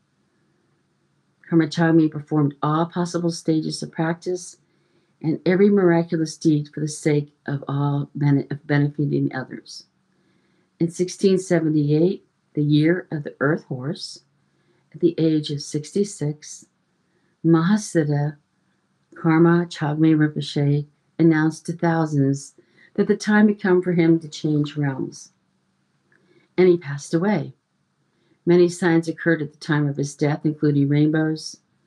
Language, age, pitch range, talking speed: English, 50-69, 145-175 Hz, 120 wpm